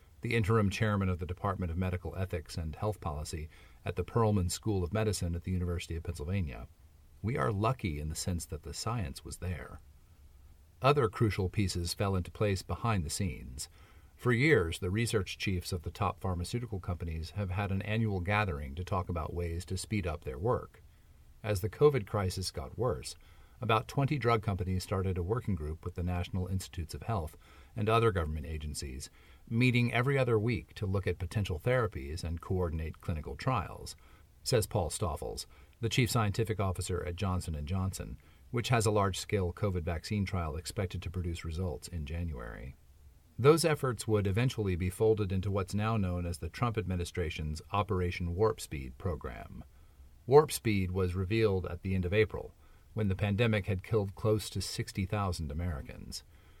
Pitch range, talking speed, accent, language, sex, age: 85-105 Hz, 175 wpm, American, English, male, 40-59